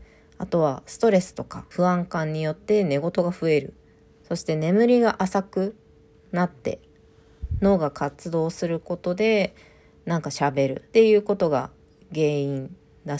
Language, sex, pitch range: Japanese, female, 135-190 Hz